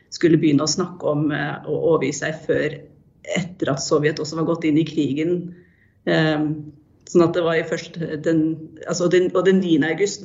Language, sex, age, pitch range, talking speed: English, female, 30-49, 155-185 Hz, 165 wpm